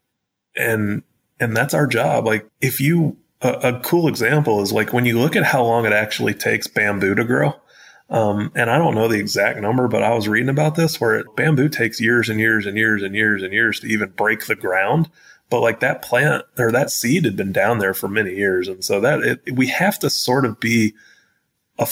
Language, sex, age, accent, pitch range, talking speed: English, male, 30-49, American, 110-145 Hz, 220 wpm